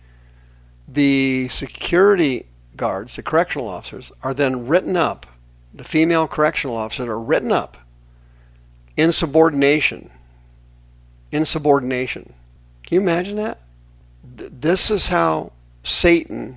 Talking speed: 100 wpm